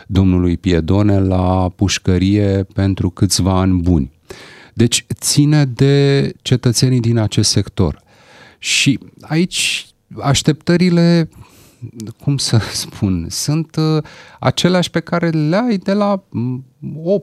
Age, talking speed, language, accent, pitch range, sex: 30-49, 105 wpm, Romanian, native, 95-130 Hz, male